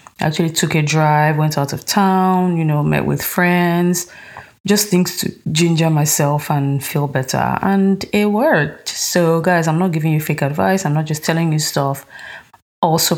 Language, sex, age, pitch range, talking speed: English, female, 20-39, 150-180 Hz, 180 wpm